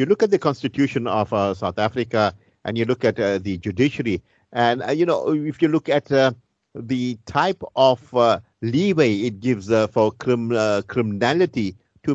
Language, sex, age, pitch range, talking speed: English, male, 50-69, 110-145 Hz, 185 wpm